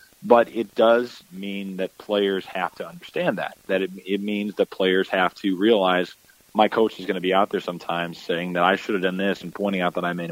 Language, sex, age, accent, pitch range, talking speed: English, male, 30-49, American, 85-105 Hz, 240 wpm